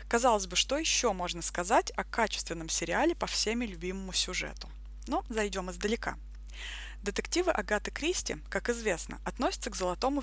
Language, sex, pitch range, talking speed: Russian, female, 200-260 Hz, 140 wpm